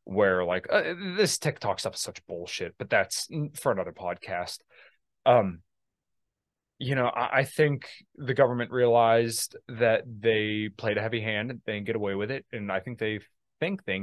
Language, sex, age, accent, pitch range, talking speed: English, male, 20-39, American, 95-125 Hz, 180 wpm